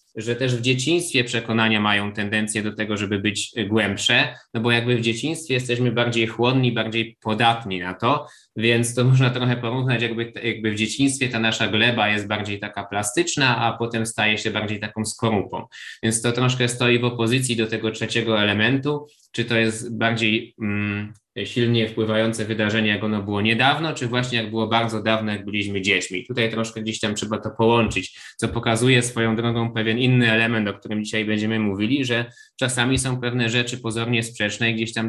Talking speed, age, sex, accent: 180 wpm, 20-39, male, native